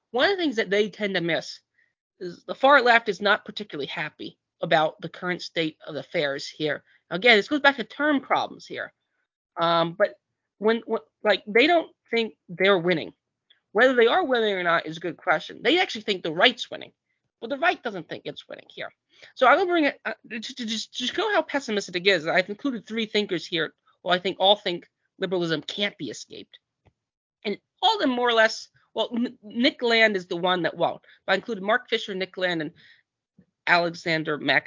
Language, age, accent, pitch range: English, 30-49, American, 170-230 Hz